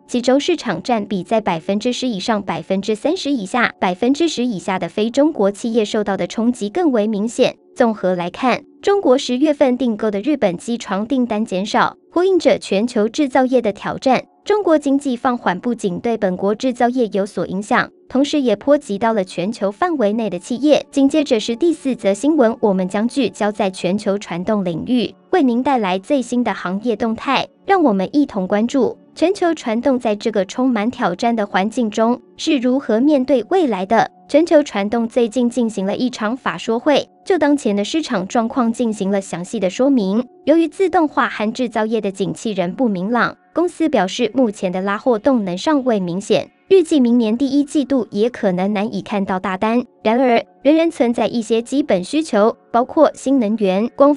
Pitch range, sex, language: 205-275 Hz, male, Chinese